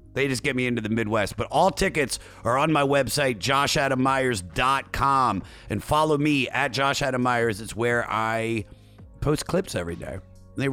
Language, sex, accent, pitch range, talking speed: English, male, American, 105-135 Hz, 170 wpm